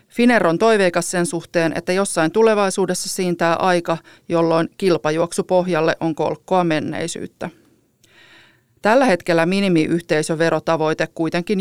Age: 40-59